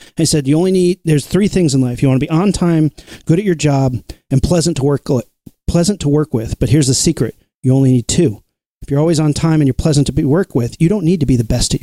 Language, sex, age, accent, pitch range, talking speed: English, male, 40-59, American, 130-170 Hz, 285 wpm